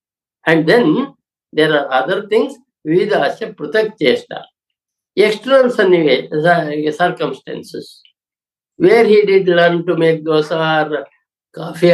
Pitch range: 160-230 Hz